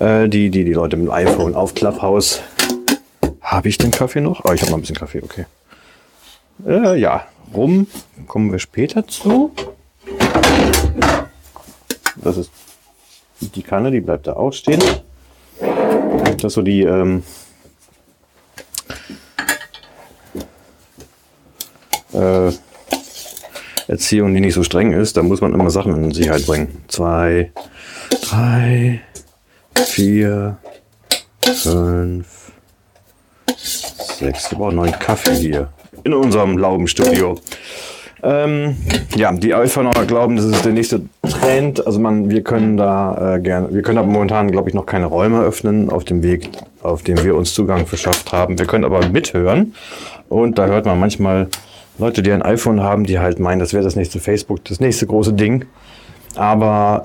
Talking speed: 140 wpm